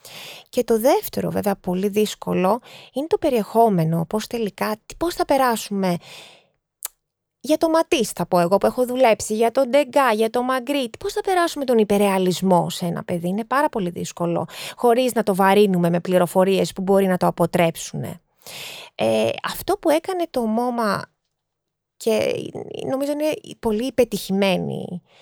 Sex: female